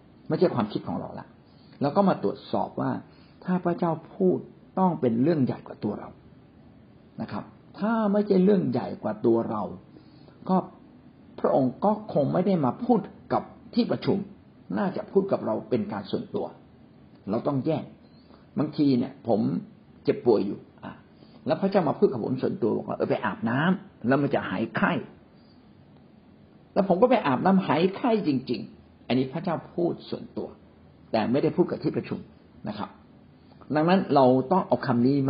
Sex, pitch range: male, 130-200 Hz